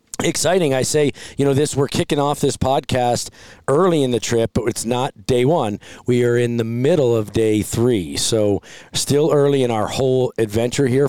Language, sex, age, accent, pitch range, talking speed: English, male, 40-59, American, 110-130 Hz, 195 wpm